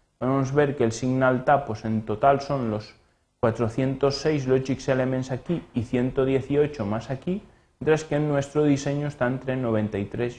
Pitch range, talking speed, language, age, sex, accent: 120-160 Hz, 155 wpm, Spanish, 30-49, male, Spanish